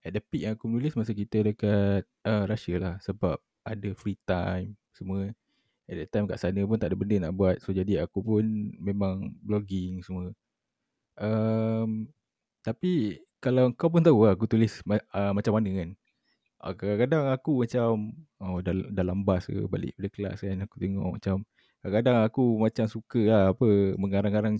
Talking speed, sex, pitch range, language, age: 170 wpm, male, 95-115 Hz, Malay, 20-39